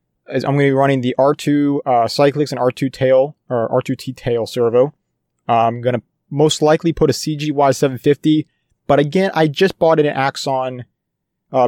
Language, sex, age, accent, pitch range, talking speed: English, male, 30-49, American, 120-150 Hz, 185 wpm